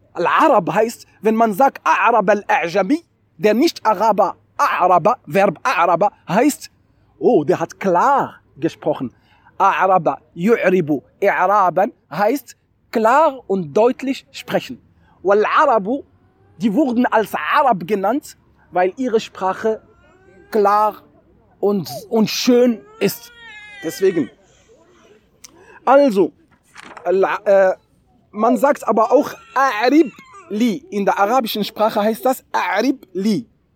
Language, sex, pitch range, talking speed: German, male, 200-270 Hz, 100 wpm